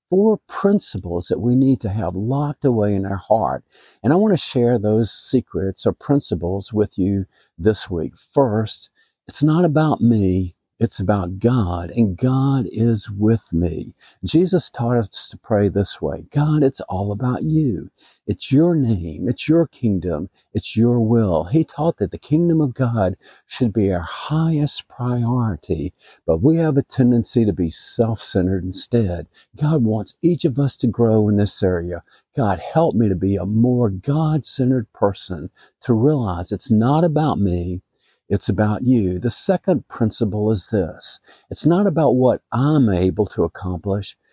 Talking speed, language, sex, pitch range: 165 wpm, English, male, 100-140 Hz